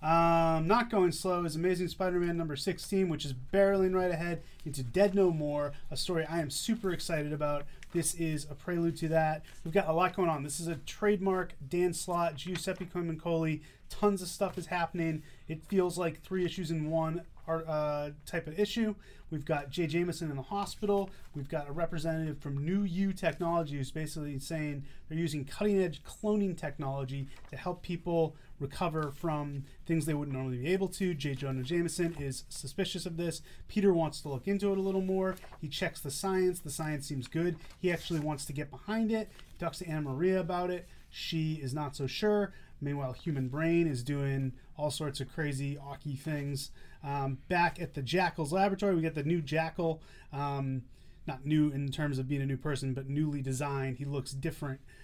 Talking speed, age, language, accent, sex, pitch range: 195 wpm, 30-49, English, American, male, 145-180 Hz